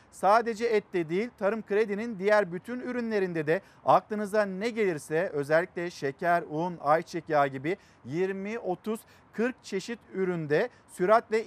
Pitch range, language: 155-210 Hz, Turkish